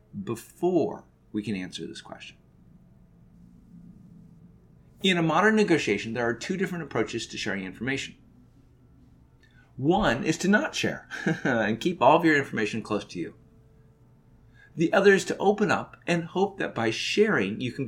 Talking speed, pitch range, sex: 150 wpm, 115-160 Hz, male